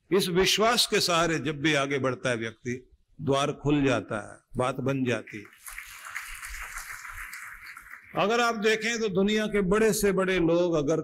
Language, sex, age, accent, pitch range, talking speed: Hindi, male, 50-69, native, 120-165 Hz, 160 wpm